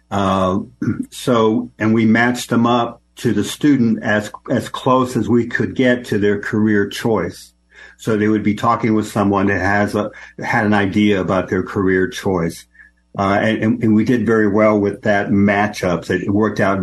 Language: English